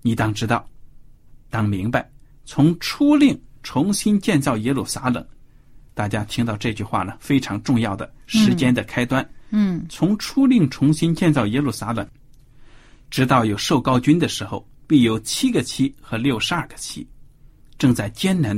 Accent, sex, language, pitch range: native, male, Chinese, 115-145 Hz